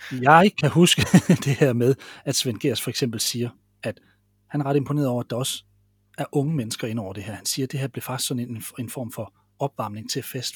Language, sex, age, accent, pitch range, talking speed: Danish, male, 30-49, native, 120-145 Hz, 240 wpm